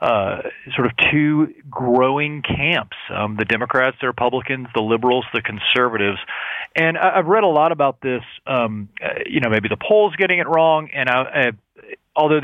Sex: male